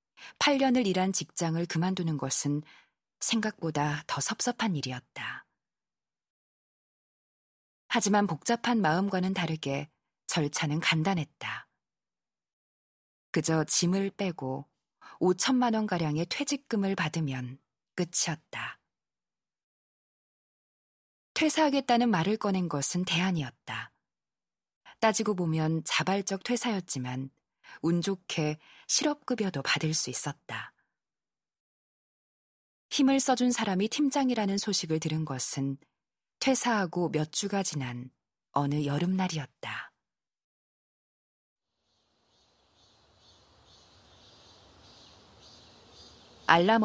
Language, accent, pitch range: Korean, native, 135-205 Hz